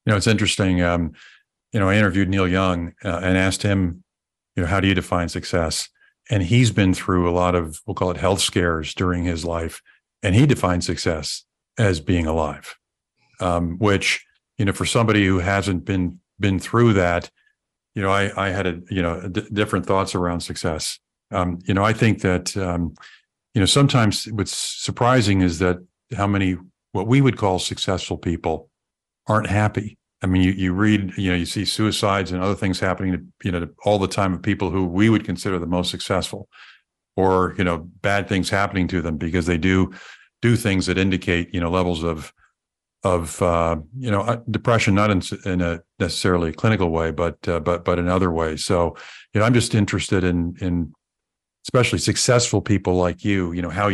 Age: 50-69